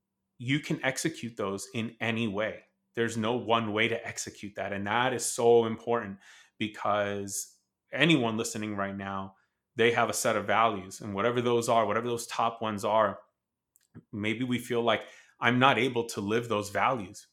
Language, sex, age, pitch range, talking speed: English, male, 30-49, 110-125 Hz, 175 wpm